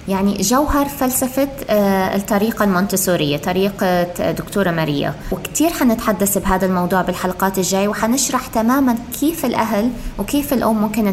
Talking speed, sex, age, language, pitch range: 115 wpm, female, 20-39, Arabic, 195-255 Hz